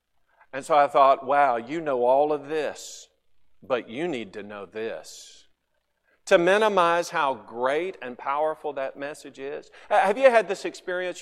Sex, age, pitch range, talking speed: male, 50-69, 140-200 Hz, 160 wpm